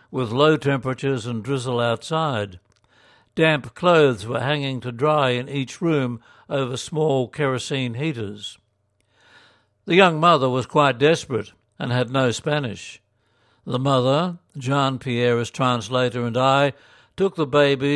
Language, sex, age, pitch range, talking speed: English, male, 60-79, 120-145 Hz, 125 wpm